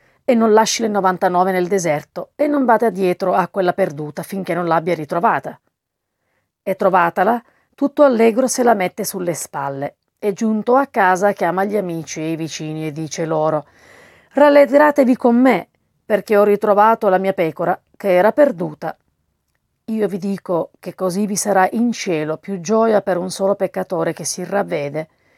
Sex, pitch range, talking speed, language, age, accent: female, 170-215 Hz, 165 wpm, Italian, 40-59, native